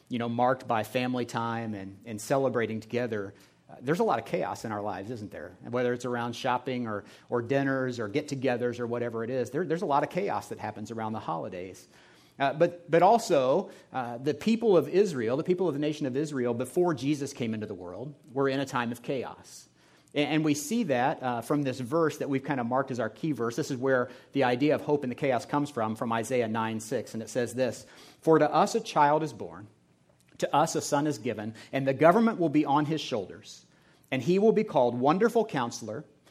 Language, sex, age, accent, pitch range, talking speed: English, male, 40-59, American, 120-165 Hz, 230 wpm